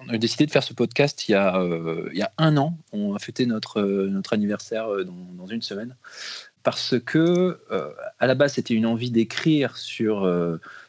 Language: French